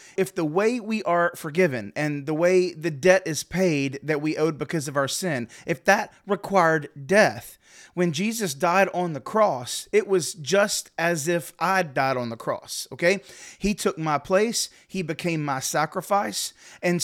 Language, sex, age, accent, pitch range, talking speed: English, male, 30-49, American, 155-195 Hz, 175 wpm